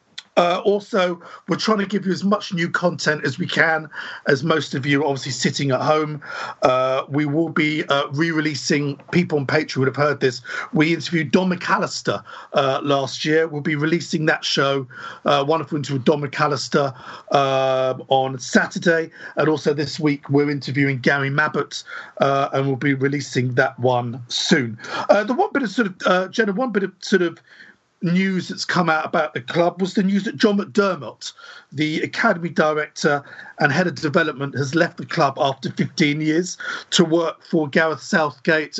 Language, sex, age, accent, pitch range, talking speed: English, male, 50-69, British, 145-185 Hz, 185 wpm